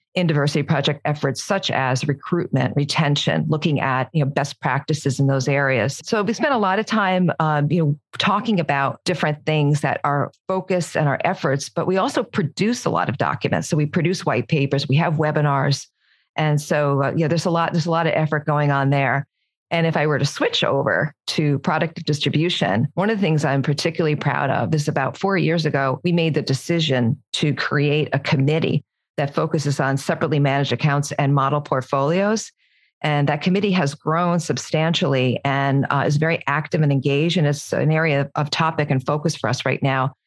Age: 40-59